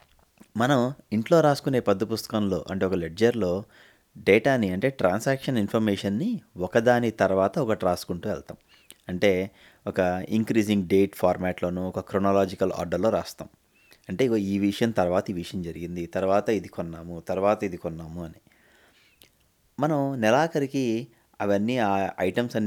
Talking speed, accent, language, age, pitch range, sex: 75 wpm, Indian, English, 30-49, 95-120 Hz, male